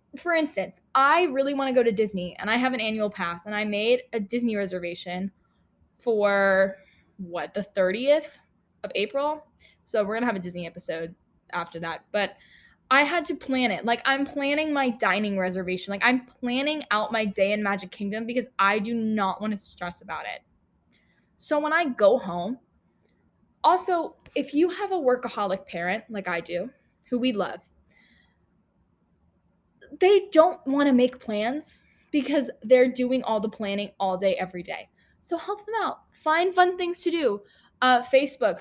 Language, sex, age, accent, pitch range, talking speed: English, female, 10-29, American, 200-275 Hz, 175 wpm